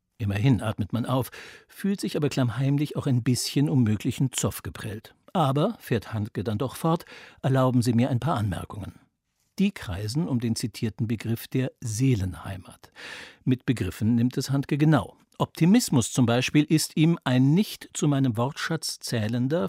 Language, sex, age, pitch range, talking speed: German, male, 60-79, 110-135 Hz, 160 wpm